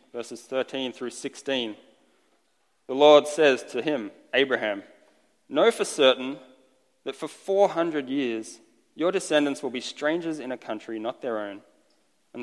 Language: English